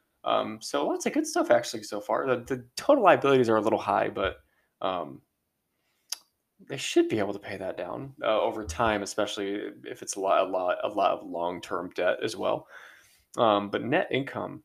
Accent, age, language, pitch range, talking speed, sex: American, 20-39, English, 105-125 Hz, 195 wpm, male